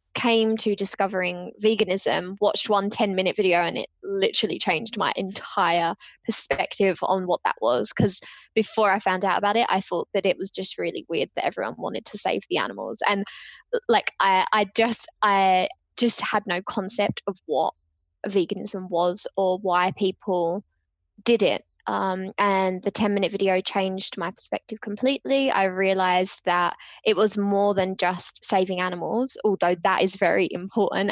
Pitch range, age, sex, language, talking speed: 185-225 Hz, 10-29, female, English, 165 wpm